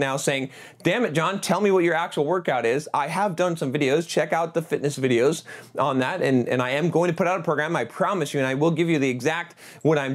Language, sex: English, male